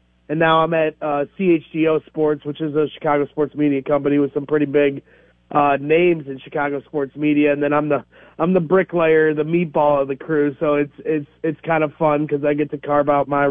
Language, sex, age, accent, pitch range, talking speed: English, male, 30-49, American, 140-160 Hz, 220 wpm